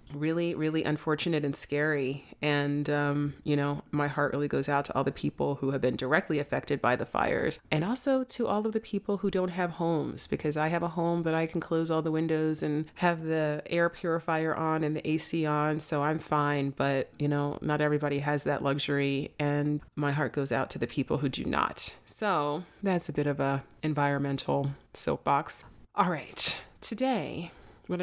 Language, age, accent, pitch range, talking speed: English, 30-49, American, 145-160 Hz, 200 wpm